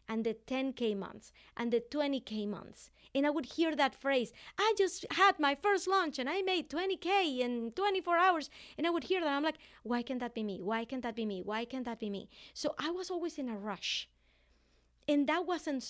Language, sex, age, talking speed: English, female, 30-49, 225 wpm